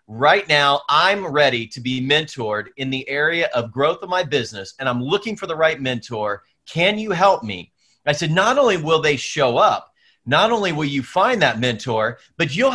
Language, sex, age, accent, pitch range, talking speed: English, male, 30-49, American, 130-185 Hz, 205 wpm